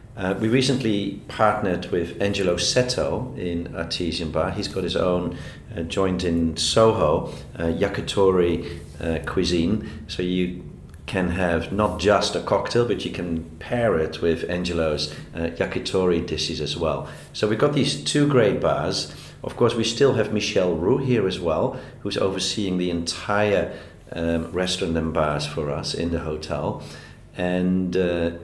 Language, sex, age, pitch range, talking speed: English, male, 40-59, 85-105 Hz, 155 wpm